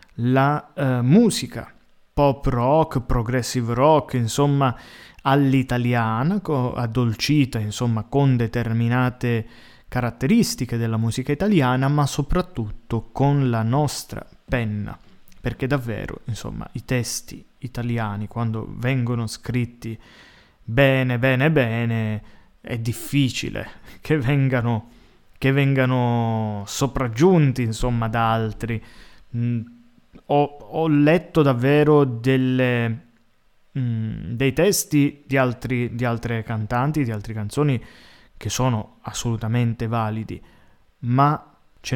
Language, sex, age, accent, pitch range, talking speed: Italian, male, 20-39, native, 115-140 Hz, 95 wpm